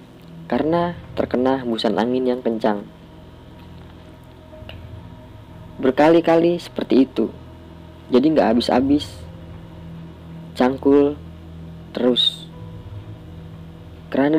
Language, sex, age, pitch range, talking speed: Indonesian, female, 20-39, 85-130 Hz, 65 wpm